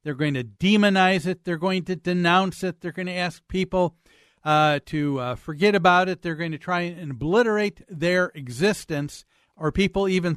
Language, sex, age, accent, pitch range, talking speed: English, male, 50-69, American, 160-200 Hz, 185 wpm